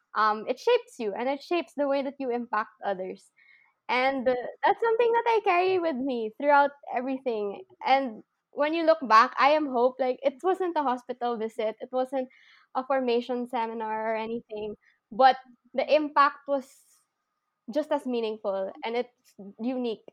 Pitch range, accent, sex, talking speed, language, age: 215-265 Hz, Filipino, female, 165 wpm, English, 20-39